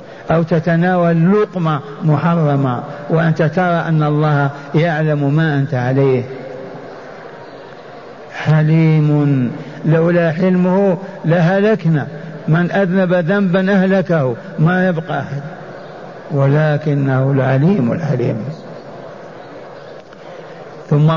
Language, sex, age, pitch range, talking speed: Arabic, male, 50-69, 155-180 Hz, 75 wpm